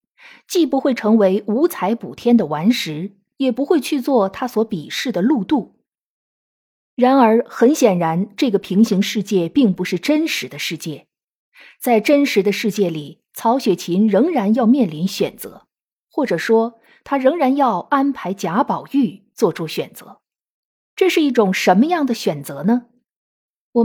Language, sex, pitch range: Chinese, female, 200-265 Hz